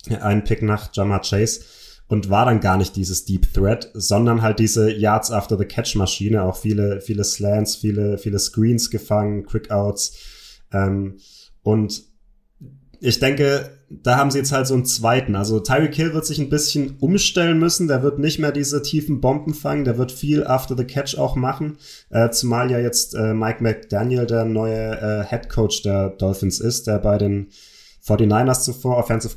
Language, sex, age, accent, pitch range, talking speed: German, male, 30-49, German, 100-125 Hz, 170 wpm